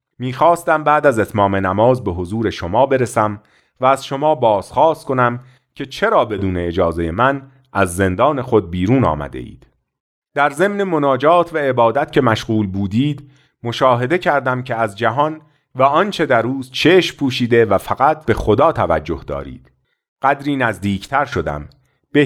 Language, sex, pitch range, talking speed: Persian, male, 100-145 Hz, 145 wpm